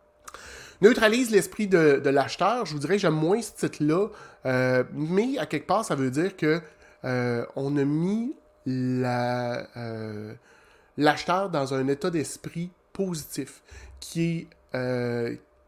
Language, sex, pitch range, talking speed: French, male, 135-170 Hz, 130 wpm